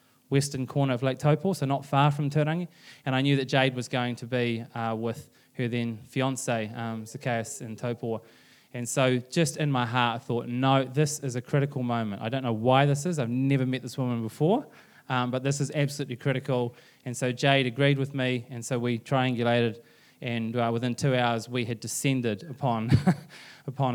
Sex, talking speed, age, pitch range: male, 200 wpm, 20-39, 115-140 Hz